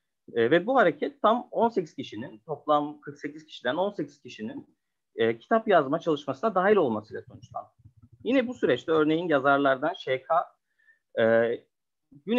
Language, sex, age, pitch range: Turkish, male, 30-49, 135-225 Hz